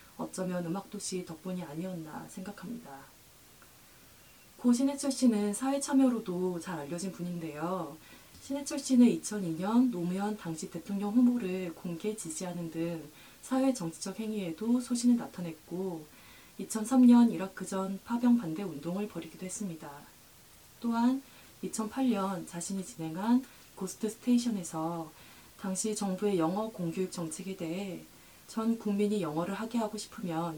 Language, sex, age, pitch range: Korean, female, 20-39, 170-220 Hz